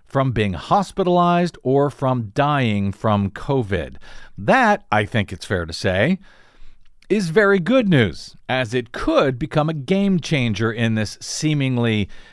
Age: 50-69